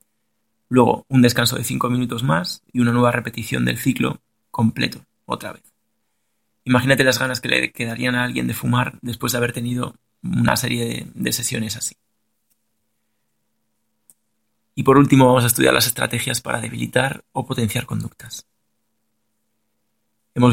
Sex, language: male, Spanish